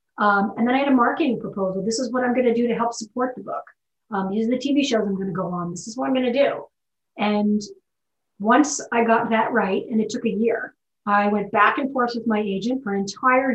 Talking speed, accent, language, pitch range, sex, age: 265 wpm, American, English, 205-245 Hz, female, 30-49